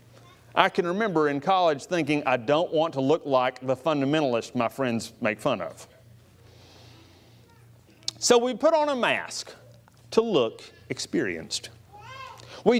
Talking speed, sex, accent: 135 wpm, male, American